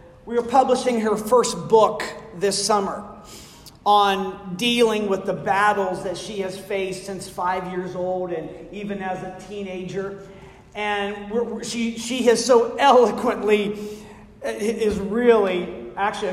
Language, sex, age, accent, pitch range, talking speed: English, male, 40-59, American, 200-265 Hz, 125 wpm